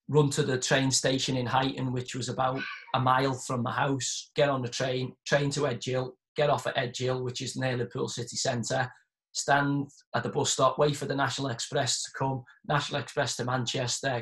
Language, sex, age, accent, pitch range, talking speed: English, male, 20-39, British, 125-140 Hz, 205 wpm